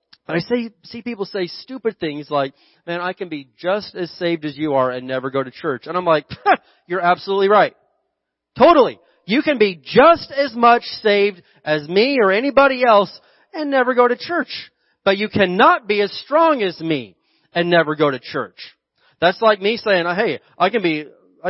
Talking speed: 195 wpm